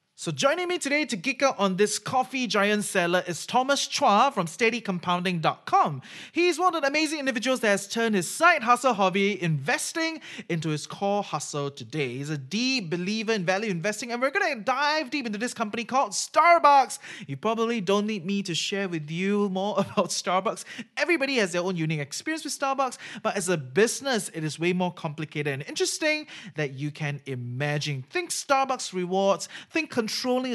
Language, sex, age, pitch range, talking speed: English, male, 20-39, 180-270 Hz, 185 wpm